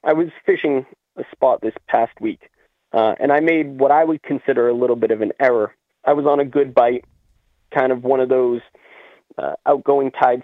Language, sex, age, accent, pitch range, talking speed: English, male, 30-49, American, 125-165 Hz, 205 wpm